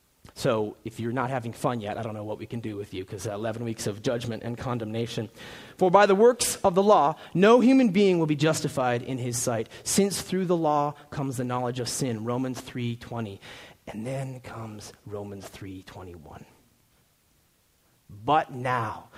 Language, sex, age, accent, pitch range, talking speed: English, male, 30-49, American, 120-175 Hz, 180 wpm